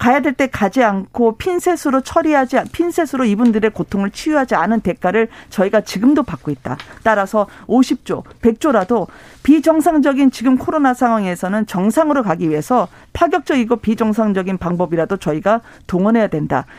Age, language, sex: 40-59, Korean, female